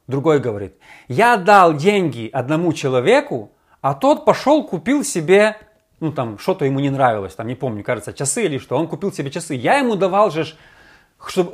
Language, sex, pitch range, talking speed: Russian, male, 150-210 Hz, 175 wpm